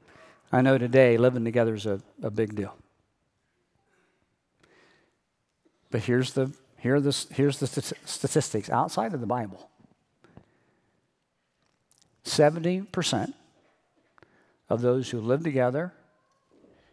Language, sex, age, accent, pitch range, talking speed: English, male, 50-69, American, 115-145 Hz, 105 wpm